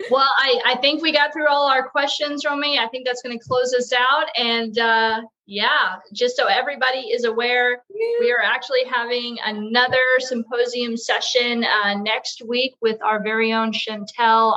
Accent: American